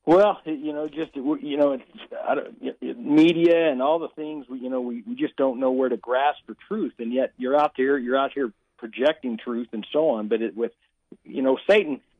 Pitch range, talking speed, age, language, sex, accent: 120-150 Hz, 210 wpm, 50-69, English, male, American